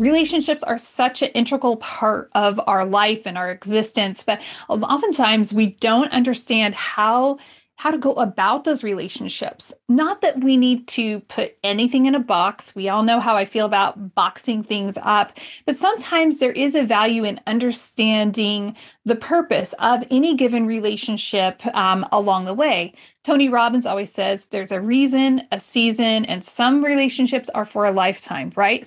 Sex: female